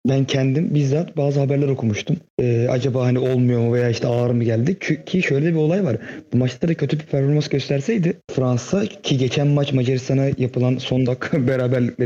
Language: Turkish